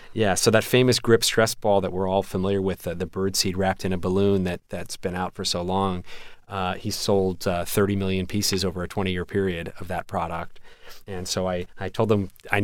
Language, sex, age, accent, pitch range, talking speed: English, male, 30-49, American, 90-105 Hz, 225 wpm